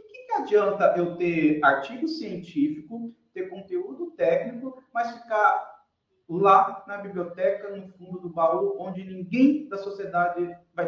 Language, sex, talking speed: Portuguese, male, 125 wpm